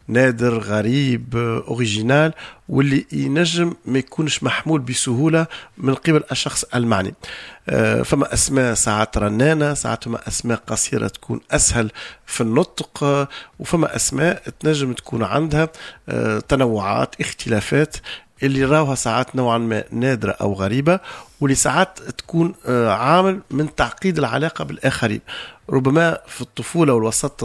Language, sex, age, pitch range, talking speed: Arabic, male, 40-59, 115-160 Hz, 115 wpm